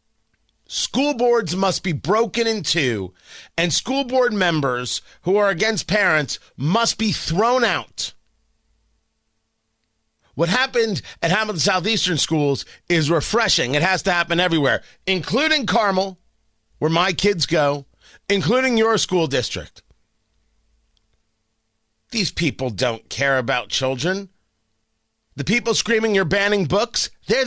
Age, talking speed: 40-59, 120 wpm